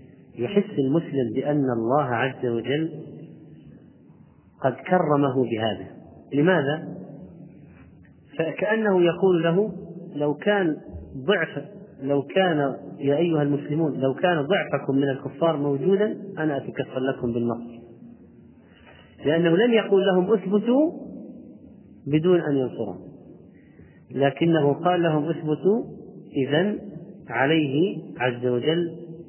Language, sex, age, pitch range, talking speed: Arabic, male, 40-59, 135-175 Hz, 95 wpm